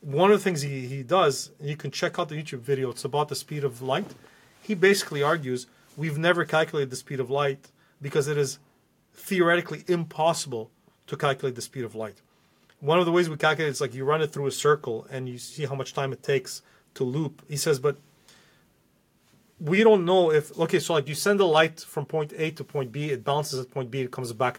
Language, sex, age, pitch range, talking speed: English, male, 30-49, 135-160 Hz, 230 wpm